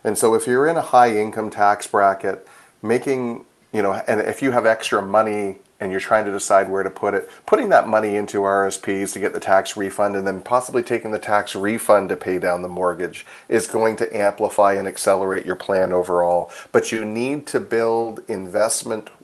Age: 40-59